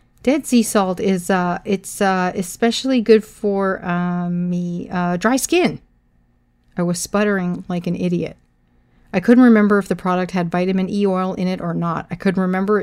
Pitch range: 170-195 Hz